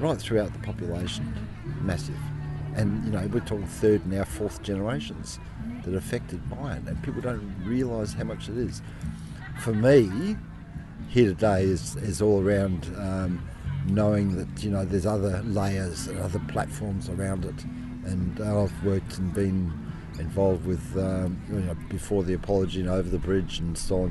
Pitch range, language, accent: 85-100 Hz, English, Australian